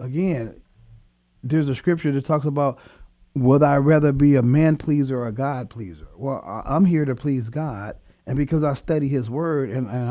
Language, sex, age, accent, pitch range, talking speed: English, male, 40-59, American, 115-155 Hz, 190 wpm